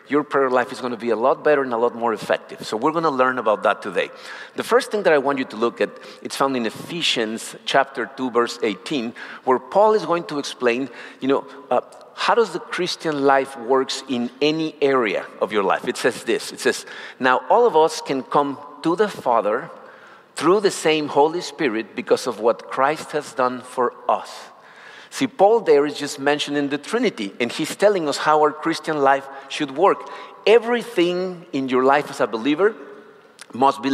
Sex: male